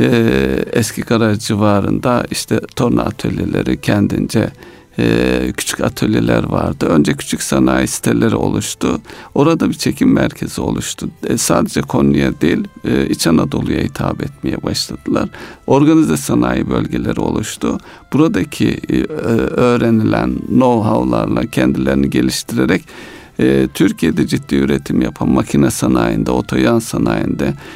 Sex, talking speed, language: male, 95 wpm, Turkish